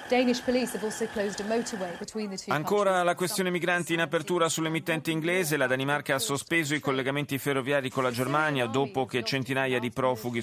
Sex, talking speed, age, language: male, 130 wpm, 30-49, Italian